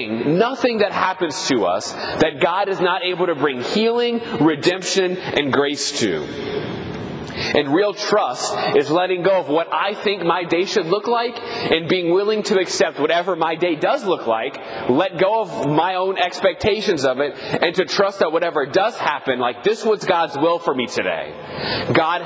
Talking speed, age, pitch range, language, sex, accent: 180 wpm, 30-49, 160-200 Hz, English, male, American